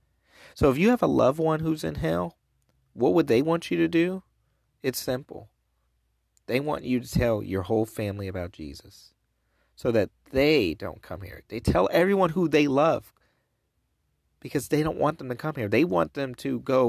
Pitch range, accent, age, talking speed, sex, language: 95-130 Hz, American, 30-49, 190 wpm, male, English